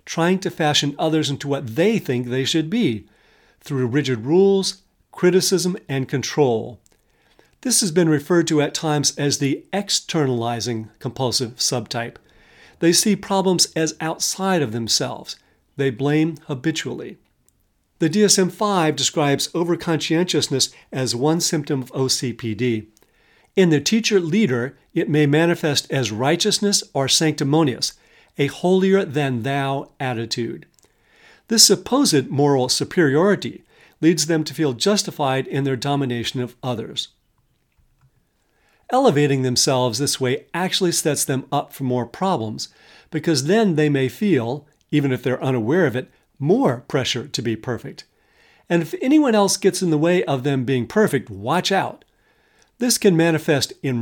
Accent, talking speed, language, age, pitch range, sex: American, 135 wpm, English, 50-69, 130-175 Hz, male